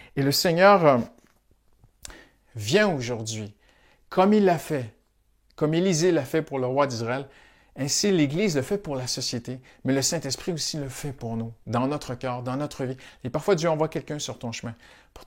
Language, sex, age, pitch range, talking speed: French, male, 50-69, 125-185 Hz, 185 wpm